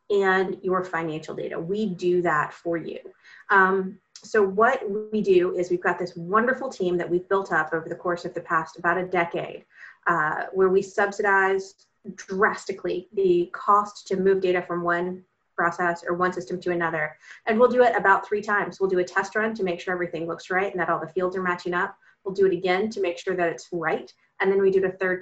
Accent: American